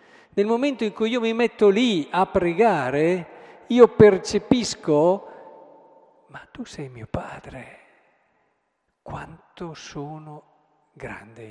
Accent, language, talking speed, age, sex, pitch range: native, Italian, 105 wpm, 50-69, male, 140-185 Hz